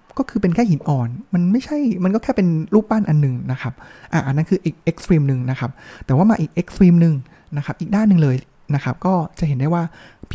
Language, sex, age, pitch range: Thai, male, 20-39, 140-185 Hz